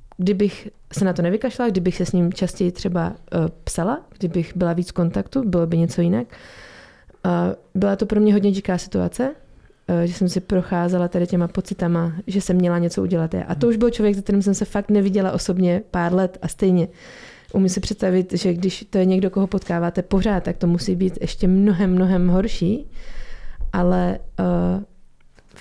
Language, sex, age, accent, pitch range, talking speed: Czech, female, 20-39, native, 175-200 Hz, 185 wpm